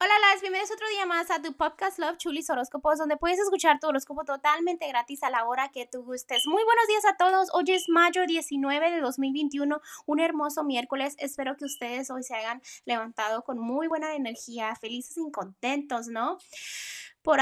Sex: female